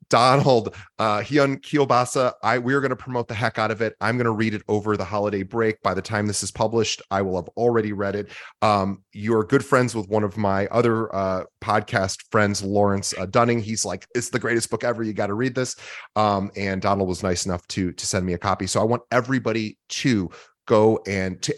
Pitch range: 100-120 Hz